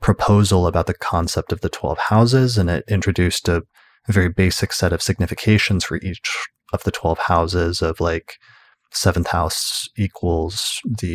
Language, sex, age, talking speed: English, male, 20-39, 155 wpm